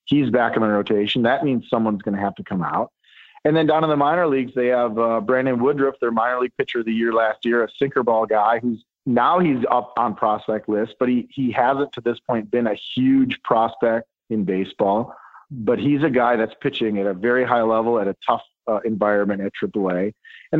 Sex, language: male, English